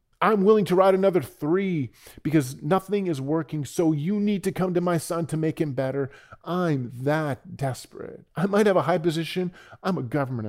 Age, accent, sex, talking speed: 40-59, American, male, 195 wpm